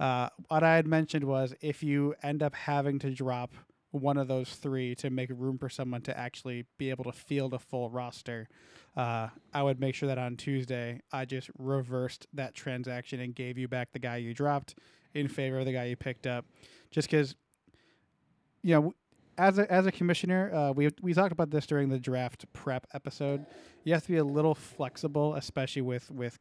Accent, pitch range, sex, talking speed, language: American, 125-150 Hz, male, 205 wpm, English